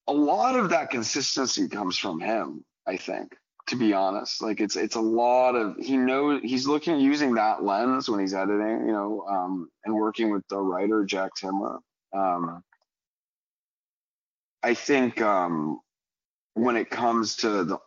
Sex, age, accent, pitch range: male, 30-49, American, 105-130 Hz